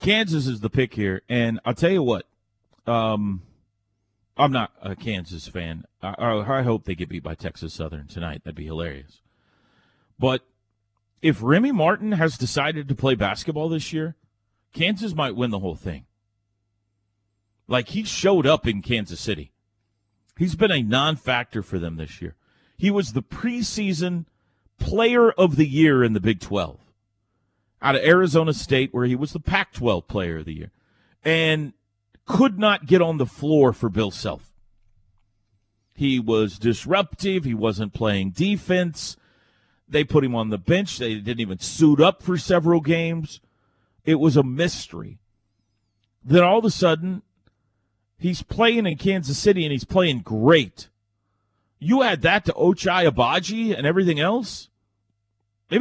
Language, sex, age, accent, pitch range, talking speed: English, male, 40-59, American, 105-165 Hz, 155 wpm